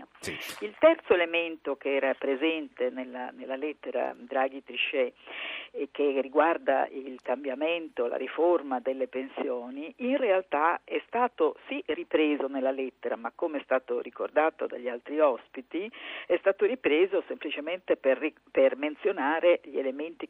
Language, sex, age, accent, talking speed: Italian, female, 50-69, native, 135 wpm